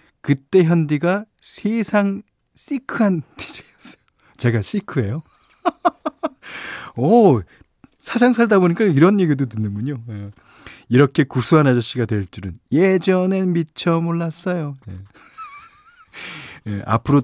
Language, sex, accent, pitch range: Korean, male, native, 115-180 Hz